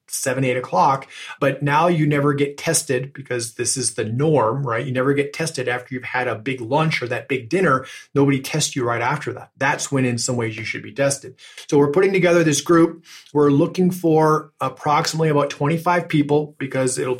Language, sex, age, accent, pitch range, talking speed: English, male, 30-49, American, 130-155 Hz, 205 wpm